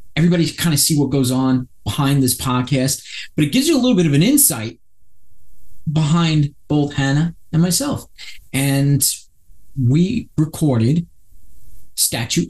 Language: English